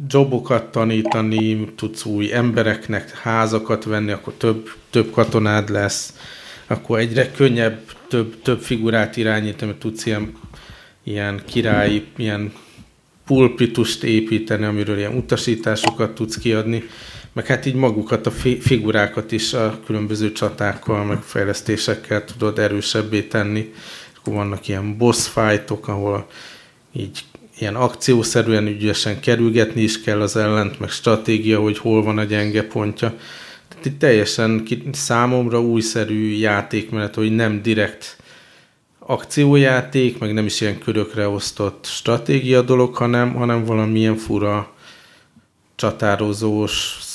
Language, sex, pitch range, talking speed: Hungarian, male, 105-115 Hz, 120 wpm